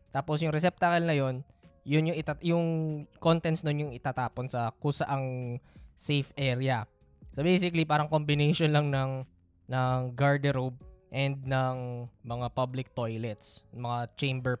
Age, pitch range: 20-39, 130-185 Hz